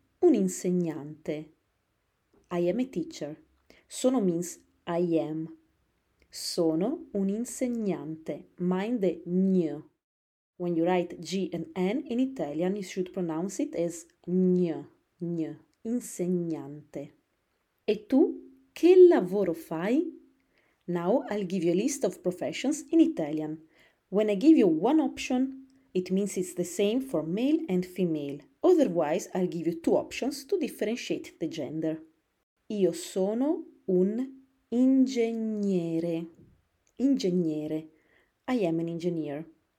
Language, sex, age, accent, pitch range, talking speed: English, female, 30-49, Italian, 160-255 Hz, 120 wpm